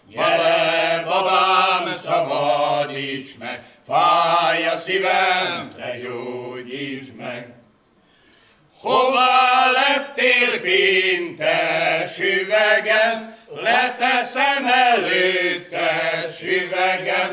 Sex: male